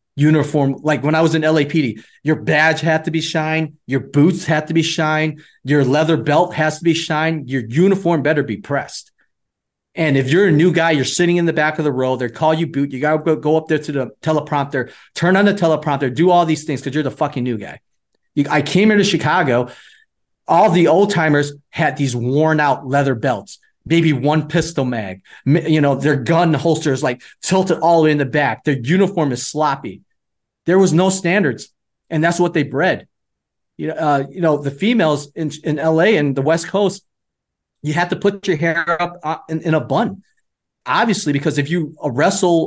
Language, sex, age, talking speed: English, male, 30-49, 205 wpm